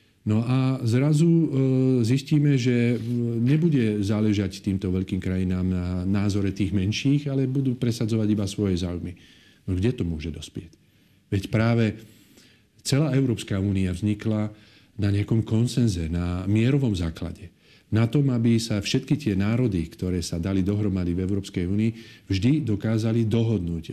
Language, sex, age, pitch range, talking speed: Slovak, male, 40-59, 95-120 Hz, 135 wpm